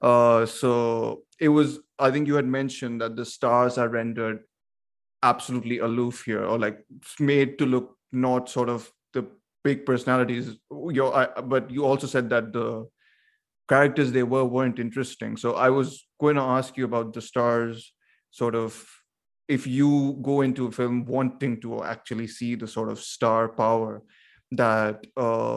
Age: 30-49